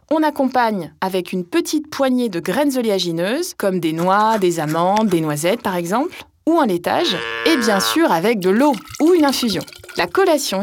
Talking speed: 180 wpm